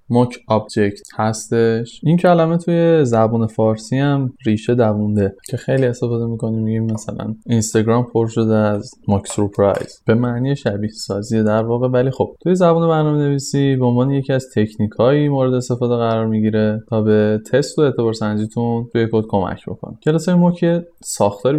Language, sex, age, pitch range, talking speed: Persian, male, 20-39, 105-135 Hz, 155 wpm